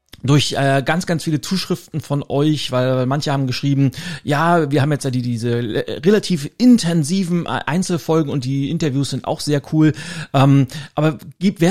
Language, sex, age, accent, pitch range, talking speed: German, male, 40-59, German, 130-160 Hz, 165 wpm